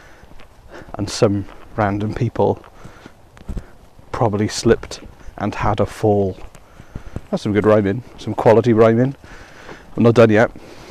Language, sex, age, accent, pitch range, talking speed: English, male, 30-49, British, 90-115 Hz, 115 wpm